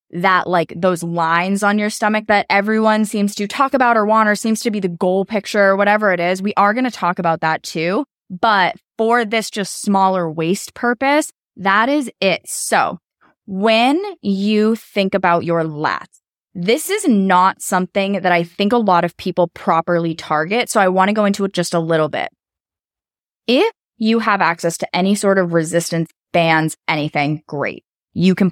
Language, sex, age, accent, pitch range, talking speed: English, female, 20-39, American, 175-220 Hz, 185 wpm